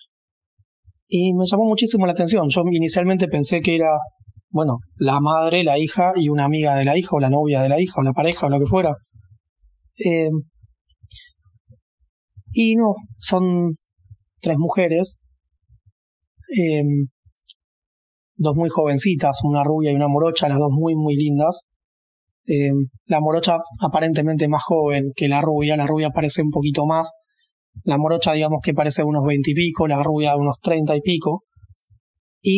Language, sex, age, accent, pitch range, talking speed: Spanish, male, 20-39, Argentinian, 110-165 Hz, 160 wpm